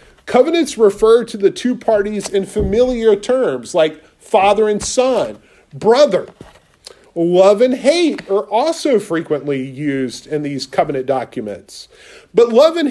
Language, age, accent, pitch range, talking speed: English, 40-59, American, 175-280 Hz, 130 wpm